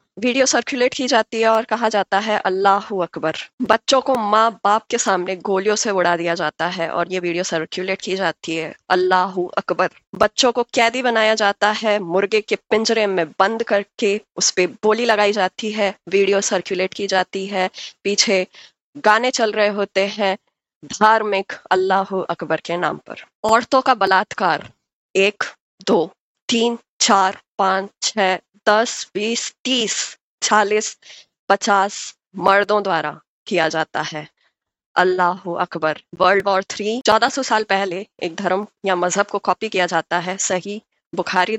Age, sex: 20-39, female